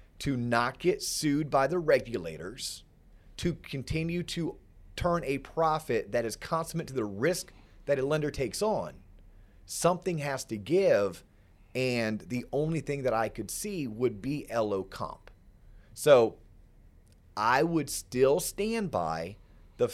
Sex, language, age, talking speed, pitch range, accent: male, English, 30-49, 140 wpm, 100-155 Hz, American